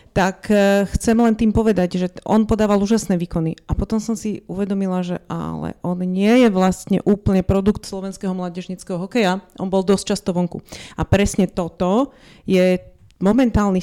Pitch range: 180-205 Hz